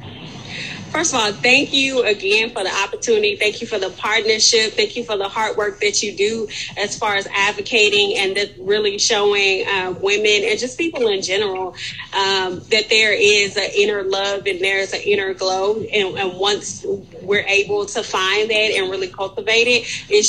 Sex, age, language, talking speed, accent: female, 20-39, English, 185 wpm, American